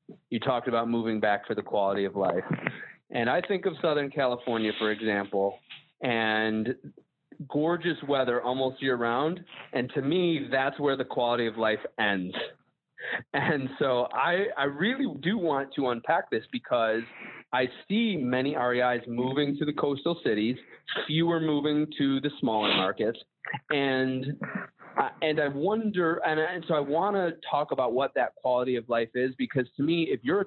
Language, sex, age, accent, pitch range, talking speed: English, male, 30-49, American, 120-155 Hz, 165 wpm